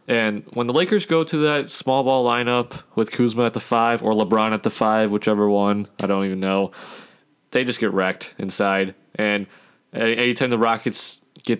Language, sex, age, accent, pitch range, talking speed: English, male, 20-39, American, 100-125 Hz, 190 wpm